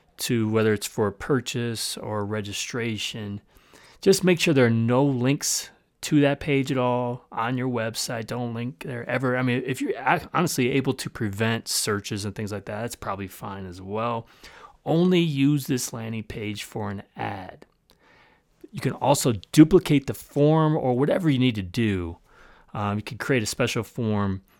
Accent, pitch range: American, 110-140 Hz